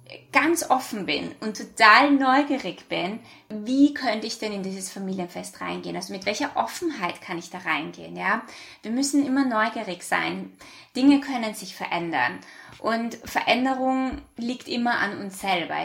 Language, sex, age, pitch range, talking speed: German, female, 20-39, 185-255 Hz, 150 wpm